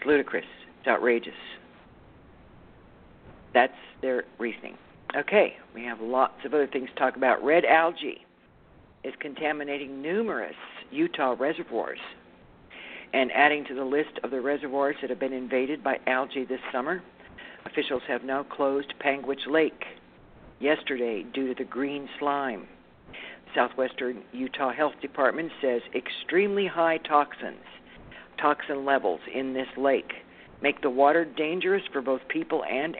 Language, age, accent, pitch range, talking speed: English, 60-79, American, 125-145 Hz, 130 wpm